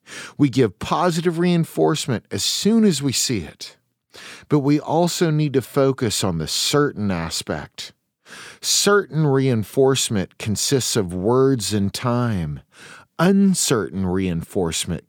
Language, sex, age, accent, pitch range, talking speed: English, male, 40-59, American, 100-150 Hz, 115 wpm